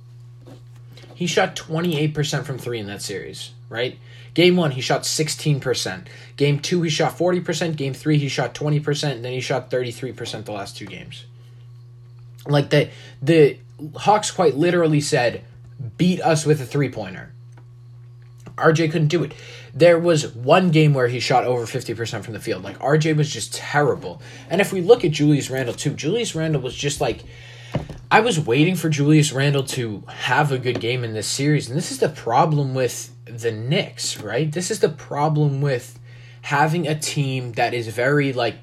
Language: English